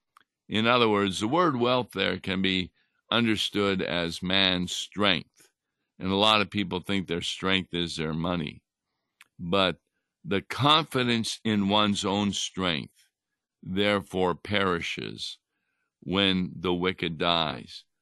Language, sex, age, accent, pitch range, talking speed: English, male, 60-79, American, 90-105 Hz, 125 wpm